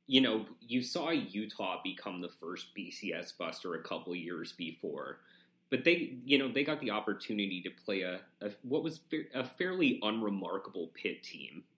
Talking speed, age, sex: 170 wpm, 30-49, male